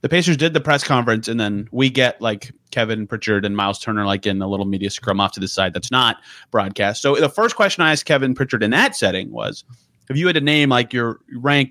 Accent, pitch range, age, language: American, 105-140 Hz, 30-49, English